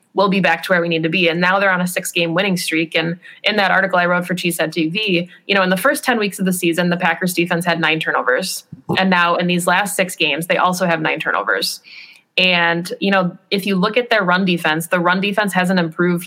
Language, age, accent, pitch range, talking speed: English, 20-39, American, 170-190 Hz, 260 wpm